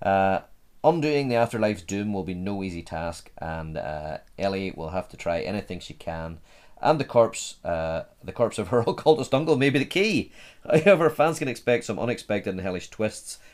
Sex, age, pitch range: male, 30-49, 80-105 Hz